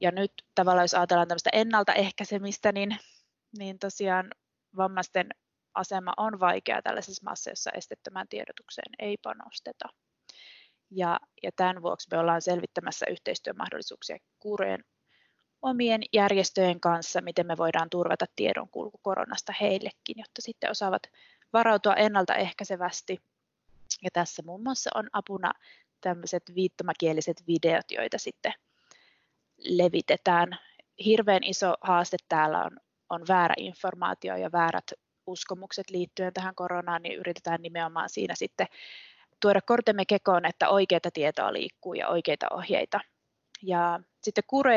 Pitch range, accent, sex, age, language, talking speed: 175-210 Hz, native, female, 20-39, Finnish, 115 wpm